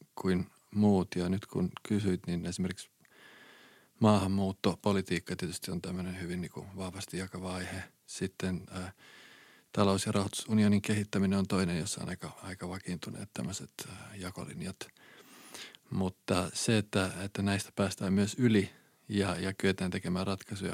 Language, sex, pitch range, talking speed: Finnish, male, 95-105 Hz, 135 wpm